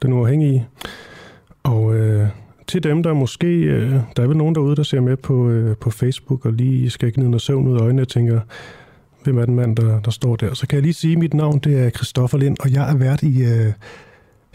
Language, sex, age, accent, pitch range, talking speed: Danish, male, 30-49, native, 120-145 Hz, 230 wpm